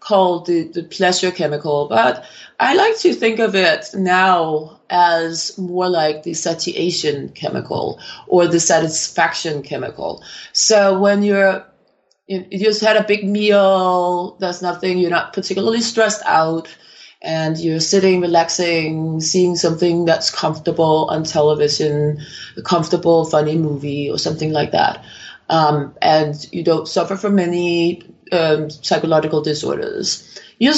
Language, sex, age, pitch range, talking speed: English, female, 30-49, 165-210 Hz, 135 wpm